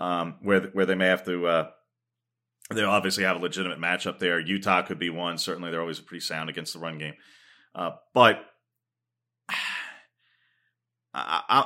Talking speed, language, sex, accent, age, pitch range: 160 wpm, English, male, American, 30-49, 90-115 Hz